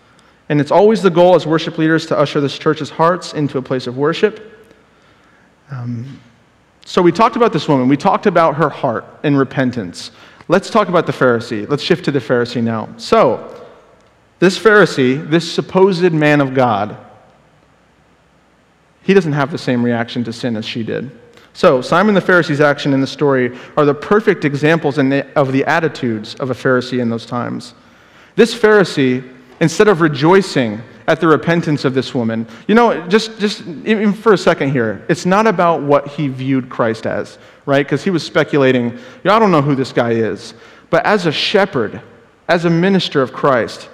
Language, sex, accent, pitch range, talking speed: English, male, American, 130-175 Hz, 185 wpm